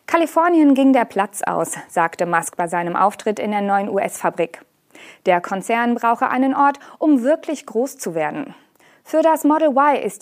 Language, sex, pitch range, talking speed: German, female, 195-280 Hz, 170 wpm